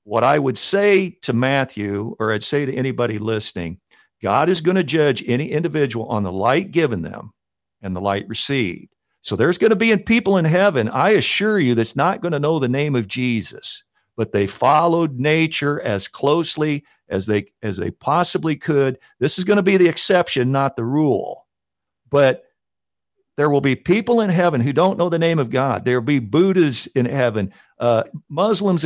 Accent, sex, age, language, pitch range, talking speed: American, male, 50-69, English, 120-180 Hz, 190 wpm